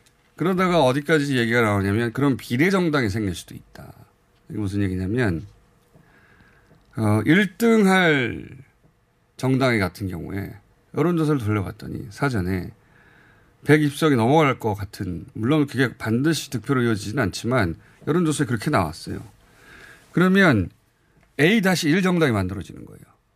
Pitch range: 110-160 Hz